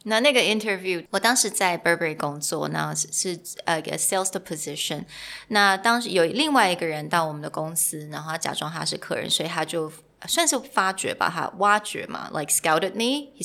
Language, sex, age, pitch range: Chinese, female, 20-39, 155-215 Hz